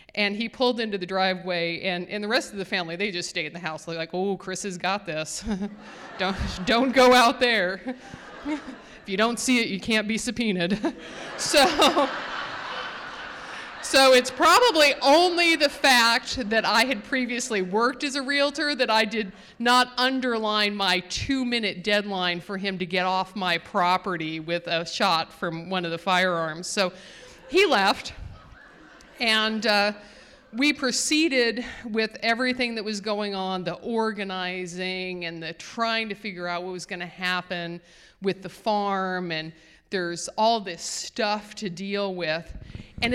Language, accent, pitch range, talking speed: English, American, 185-250 Hz, 160 wpm